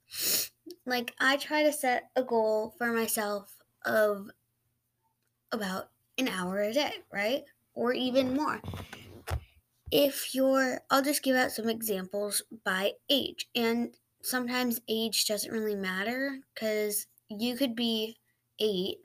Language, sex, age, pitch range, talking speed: English, female, 20-39, 205-255 Hz, 125 wpm